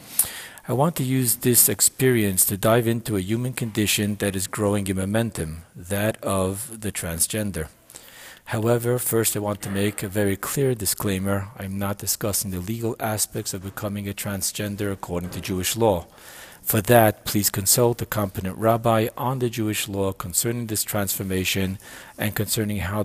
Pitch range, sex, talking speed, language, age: 95-115 Hz, male, 165 wpm, English, 40-59